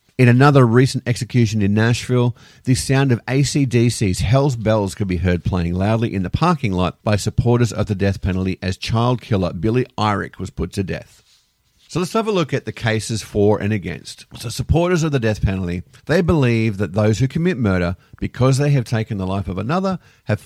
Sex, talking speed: male, 200 wpm